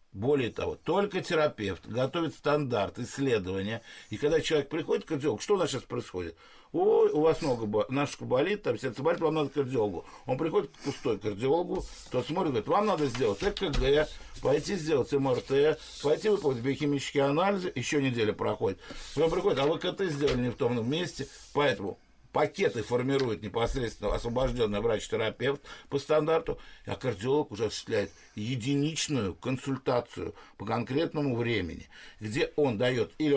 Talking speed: 150 wpm